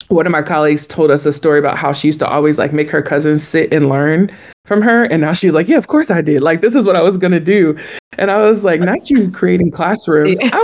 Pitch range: 150-200 Hz